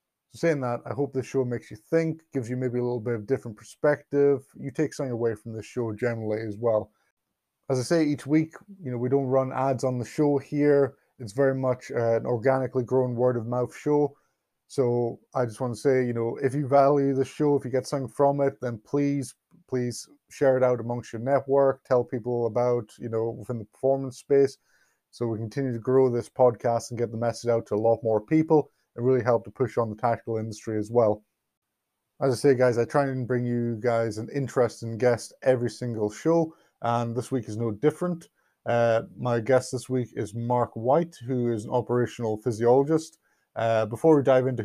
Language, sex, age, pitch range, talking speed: English, male, 20-39, 115-135 Hz, 215 wpm